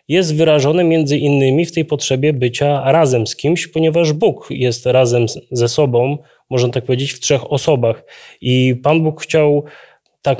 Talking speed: 160 wpm